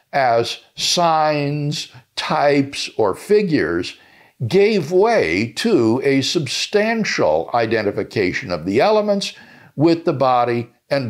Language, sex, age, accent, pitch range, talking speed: English, male, 60-79, American, 130-190 Hz, 95 wpm